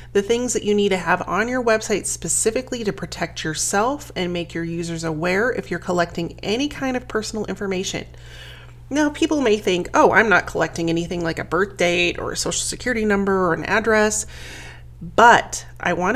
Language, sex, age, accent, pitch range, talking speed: English, female, 30-49, American, 165-210 Hz, 190 wpm